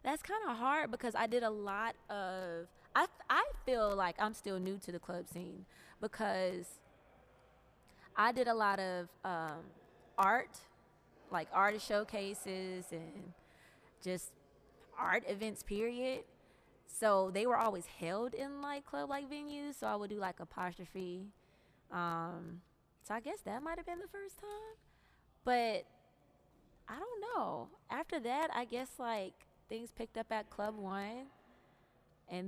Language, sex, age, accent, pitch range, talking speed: English, female, 20-39, American, 175-230 Hz, 145 wpm